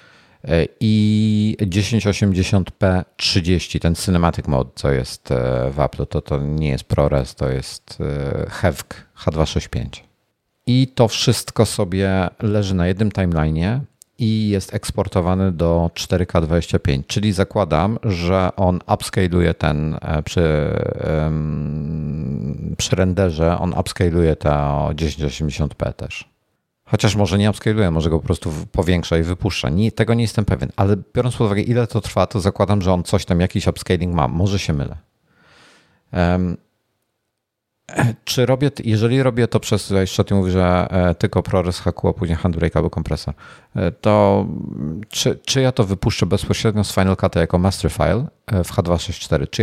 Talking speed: 140 wpm